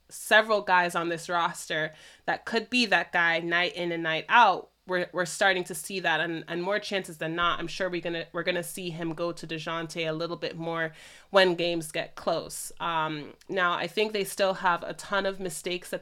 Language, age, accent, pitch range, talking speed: English, 30-49, American, 170-200 Hz, 215 wpm